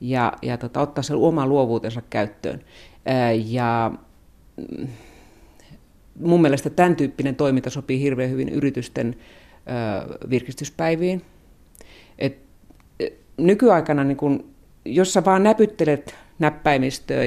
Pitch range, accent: 125-165 Hz, native